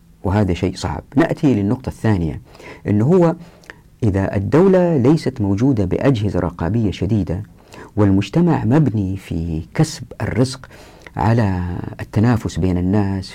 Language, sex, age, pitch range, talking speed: Arabic, female, 50-69, 95-140 Hz, 110 wpm